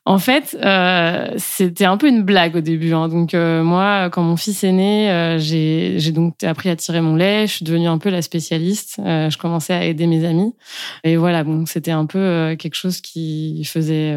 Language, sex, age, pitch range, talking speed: French, female, 20-39, 165-190 Hz, 225 wpm